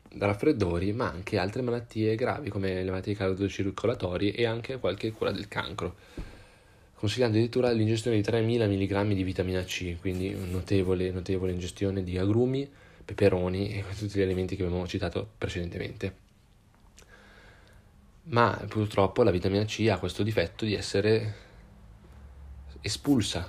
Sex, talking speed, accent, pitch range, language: male, 130 wpm, native, 95-110 Hz, Italian